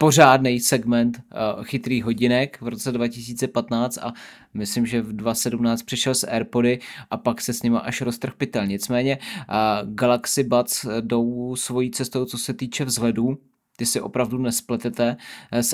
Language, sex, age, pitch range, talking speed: Czech, male, 20-39, 110-125 Hz, 150 wpm